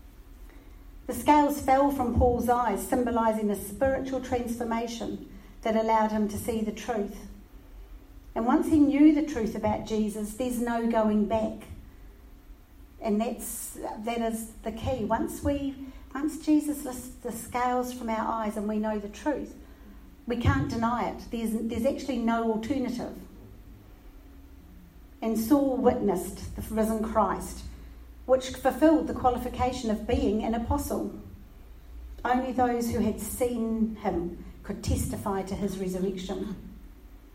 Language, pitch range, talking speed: English, 205-250 Hz, 135 wpm